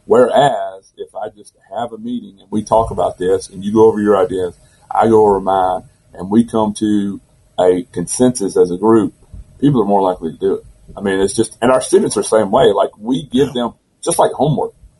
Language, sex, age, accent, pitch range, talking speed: English, male, 40-59, American, 100-125 Hz, 225 wpm